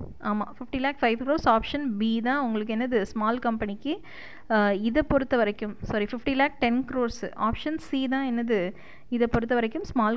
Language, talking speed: Tamil, 165 wpm